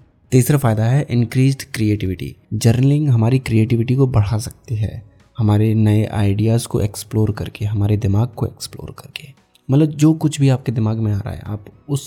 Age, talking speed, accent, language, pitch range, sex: 20-39, 175 wpm, native, Hindi, 105-125 Hz, male